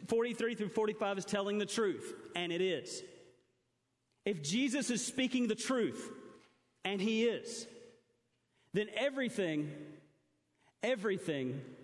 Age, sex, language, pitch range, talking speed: 40-59, male, English, 125-180 Hz, 110 wpm